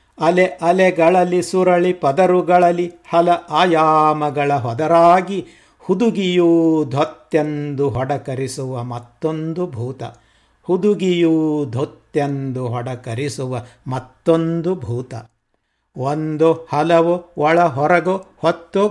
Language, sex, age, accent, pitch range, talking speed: Kannada, male, 60-79, native, 130-165 Hz, 70 wpm